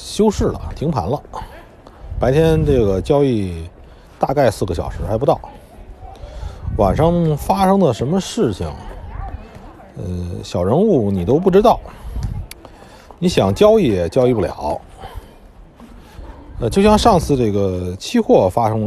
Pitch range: 90-135 Hz